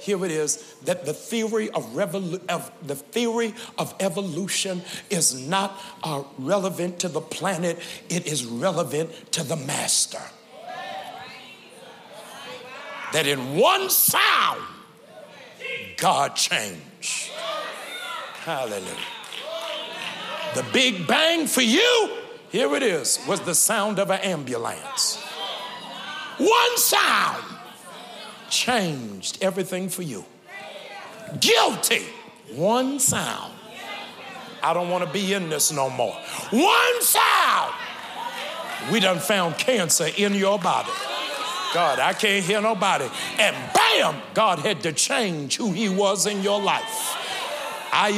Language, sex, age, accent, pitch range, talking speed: English, male, 60-79, American, 180-235 Hz, 110 wpm